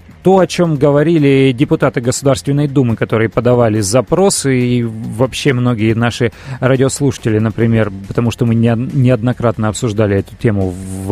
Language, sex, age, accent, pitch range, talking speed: Russian, male, 30-49, native, 115-140 Hz, 130 wpm